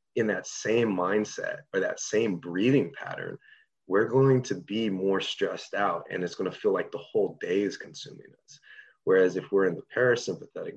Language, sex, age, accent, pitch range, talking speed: English, male, 30-49, American, 95-135 Hz, 185 wpm